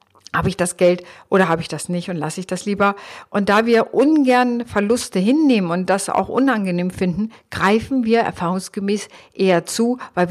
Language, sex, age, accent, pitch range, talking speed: German, female, 50-69, German, 185-240 Hz, 180 wpm